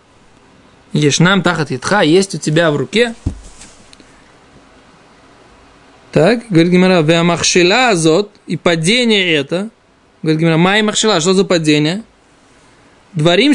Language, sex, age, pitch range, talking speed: Russian, male, 20-39, 170-230 Hz, 100 wpm